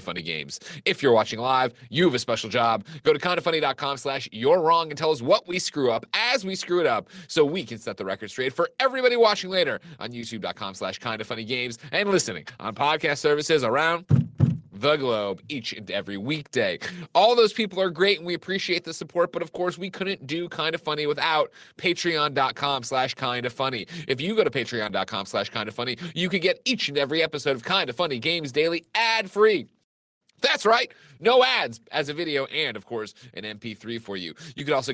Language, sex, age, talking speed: English, male, 30-49, 195 wpm